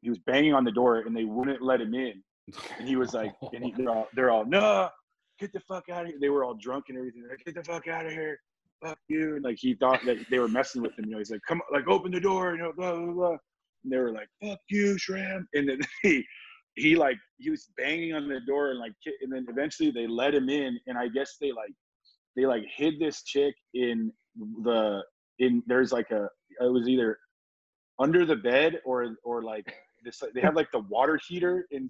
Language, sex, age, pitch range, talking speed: English, male, 20-39, 130-180 Hz, 245 wpm